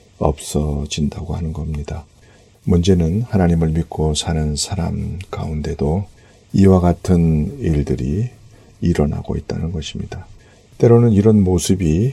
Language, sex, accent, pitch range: Korean, male, native, 75-100 Hz